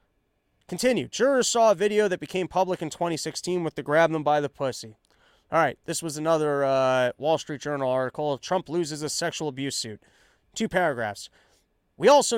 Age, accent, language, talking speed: 30-49, American, English, 180 wpm